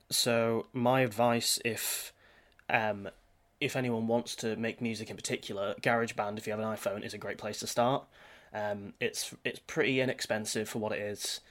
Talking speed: 175 wpm